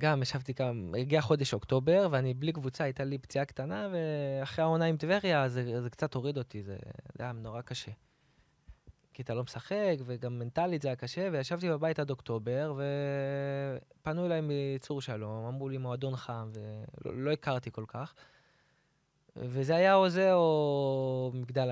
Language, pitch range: Hebrew, 120-145 Hz